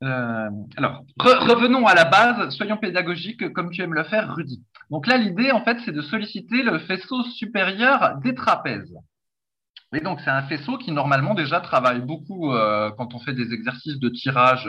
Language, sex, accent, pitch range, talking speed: French, male, French, 135-210 Hz, 190 wpm